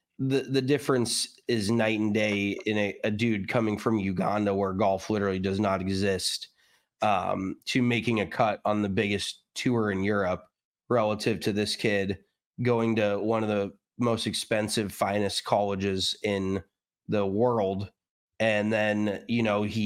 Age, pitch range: 30-49, 100-115 Hz